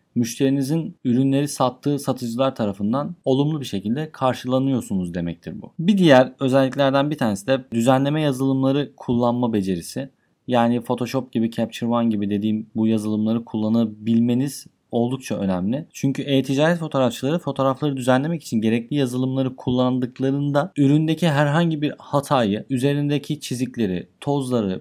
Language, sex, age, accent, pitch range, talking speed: Turkish, male, 30-49, native, 120-150 Hz, 120 wpm